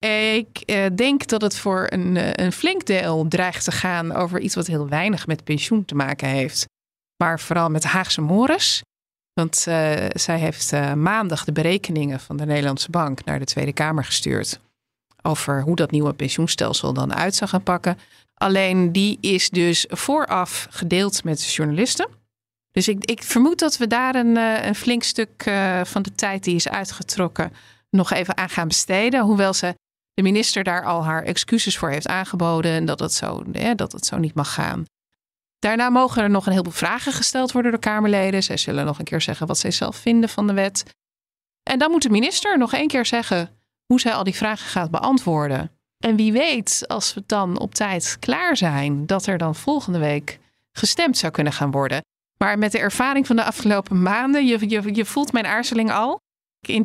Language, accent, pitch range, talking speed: Dutch, Dutch, 160-225 Hz, 195 wpm